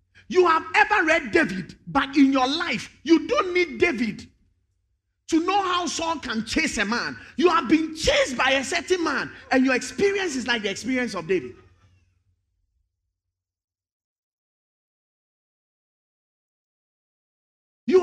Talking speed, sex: 130 wpm, male